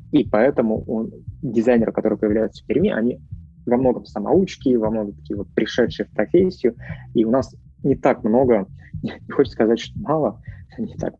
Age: 20-39